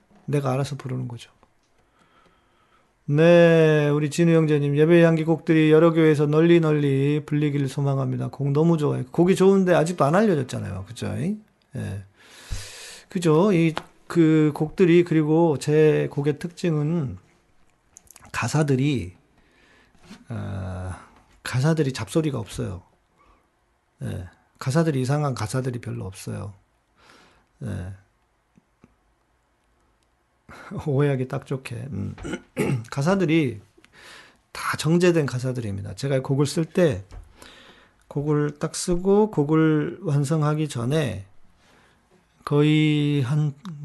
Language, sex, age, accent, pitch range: Korean, male, 40-59, native, 125-160 Hz